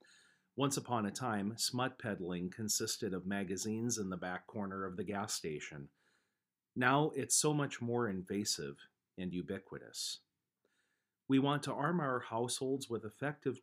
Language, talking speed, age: English, 145 wpm, 40-59